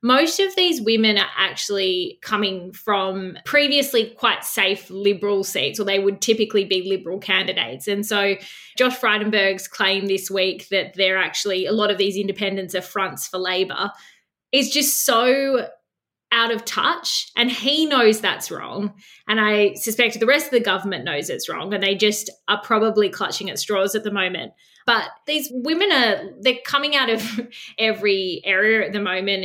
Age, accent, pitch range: 20-39, Australian, 195-225 Hz